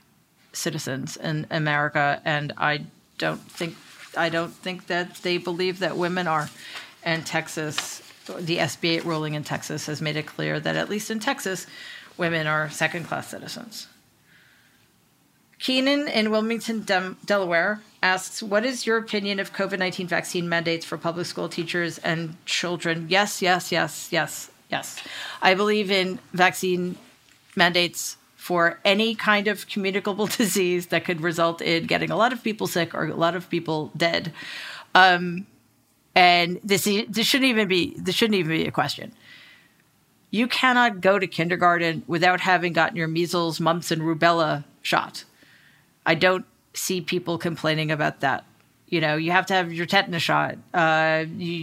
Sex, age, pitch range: female, 40-59, 165-195 Hz